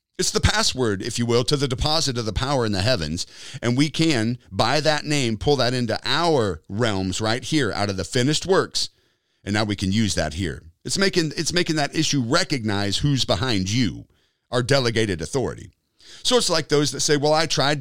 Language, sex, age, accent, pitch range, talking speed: English, male, 40-59, American, 105-150 Hz, 210 wpm